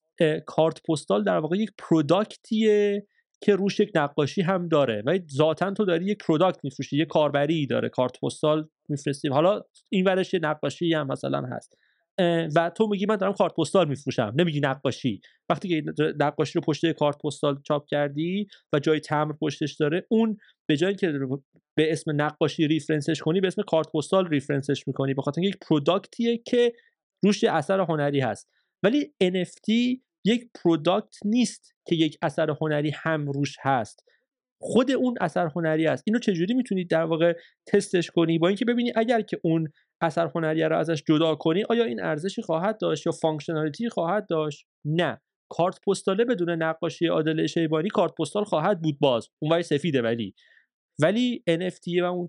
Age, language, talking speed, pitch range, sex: 30-49, Persian, 165 wpm, 155-195 Hz, male